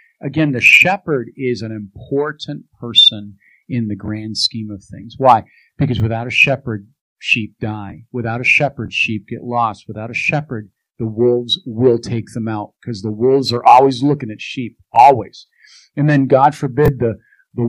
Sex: male